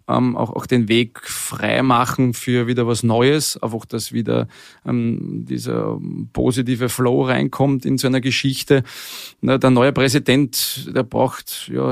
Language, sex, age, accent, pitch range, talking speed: German, male, 30-49, Austrian, 125-135 Hz, 150 wpm